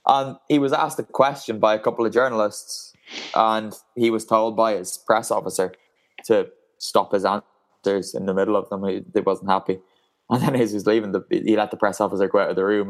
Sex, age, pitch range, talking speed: male, 20-39, 105-130 Hz, 230 wpm